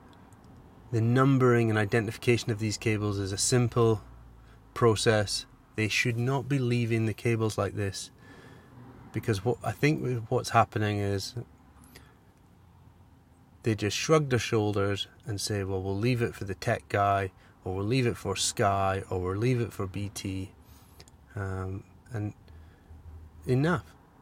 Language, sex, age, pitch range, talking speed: English, male, 30-49, 100-120 Hz, 140 wpm